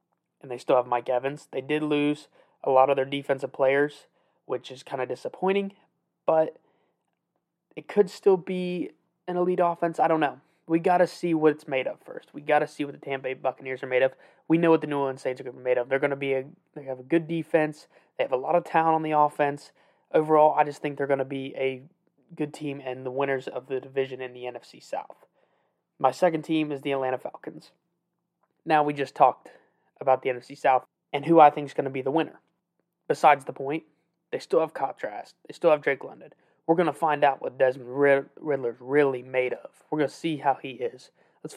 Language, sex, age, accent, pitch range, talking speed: English, male, 20-39, American, 130-160 Hz, 230 wpm